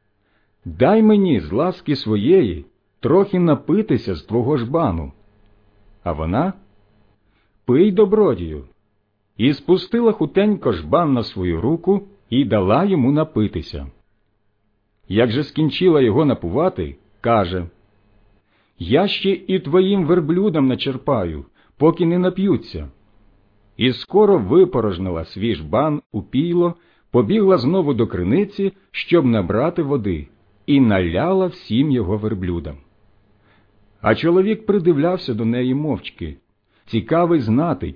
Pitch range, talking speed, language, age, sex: 100-160 Hz, 105 wpm, Ukrainian, 50-69, male